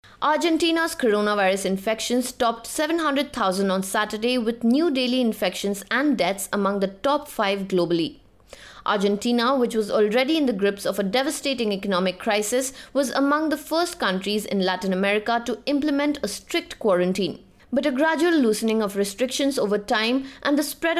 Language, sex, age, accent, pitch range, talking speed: English, female, 20-39, Indian, 205-280 Hz, 155 wpm